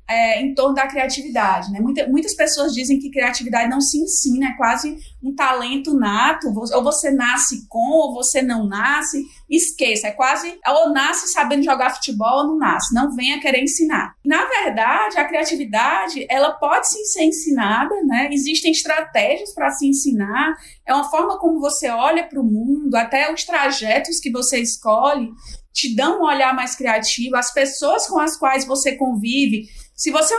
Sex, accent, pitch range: female, Brazilian, 250-310 Hz